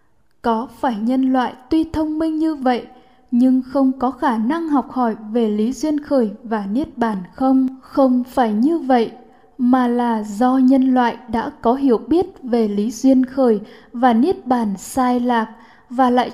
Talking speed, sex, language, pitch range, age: 175 wpm, female, Vietnamese, 235-275 Hz, 10-29